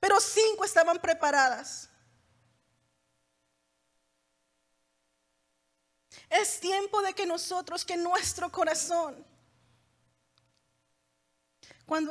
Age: 40-59